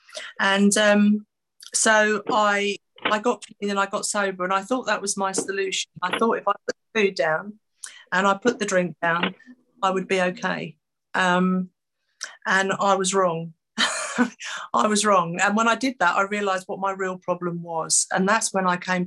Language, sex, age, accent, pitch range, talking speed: English, female, 40-59, British, 175-210 Hz, 190 wpm